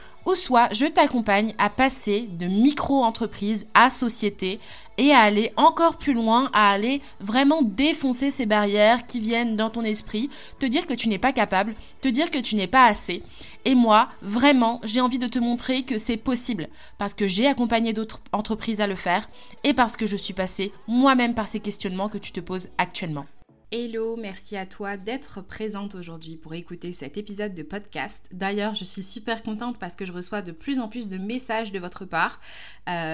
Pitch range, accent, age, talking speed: 190-240 Hz, French, 20-39, 195 wpm